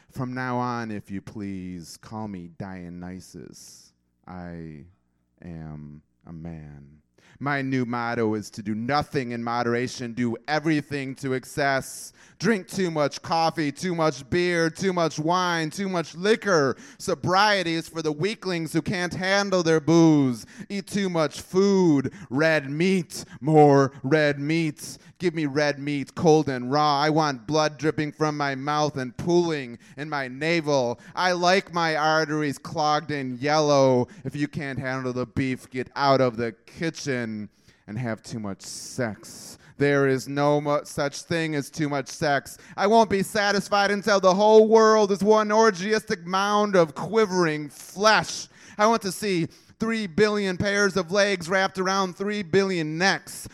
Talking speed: 155 wpm